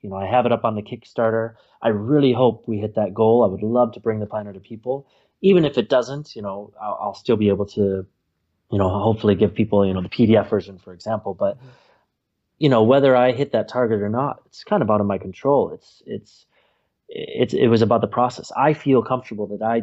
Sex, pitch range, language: male, 105-130 Hz, English